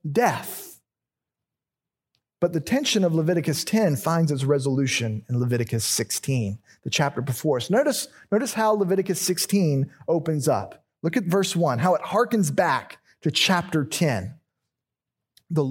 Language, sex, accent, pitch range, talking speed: English, male, American, 145-200 Hz, 140 wpm